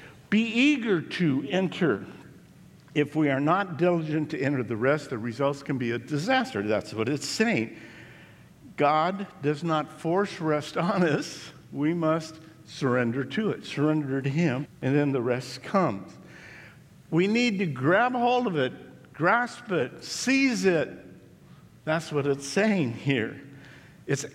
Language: English